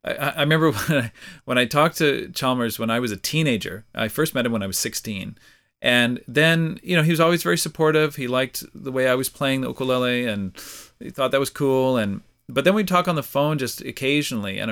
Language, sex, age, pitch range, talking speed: English, male, 40-59, 115-145 Hz, 230 wpm